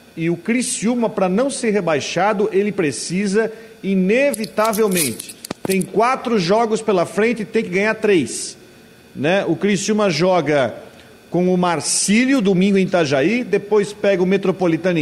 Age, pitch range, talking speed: 40-59, 180-220 Hz, 135 wpm